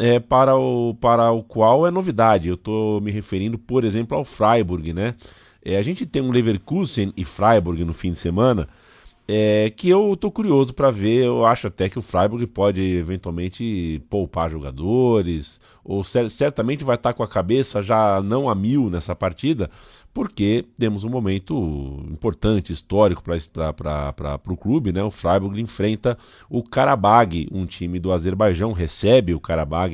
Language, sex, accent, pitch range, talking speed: Portuguese, male, Brazilian, 90-120 Hz, 160 wpm